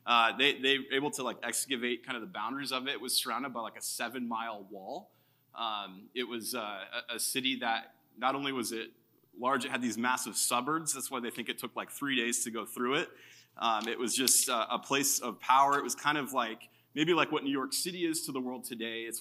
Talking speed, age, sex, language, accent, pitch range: 245 wpm, 20-39, male, English, American, 115-140 Hz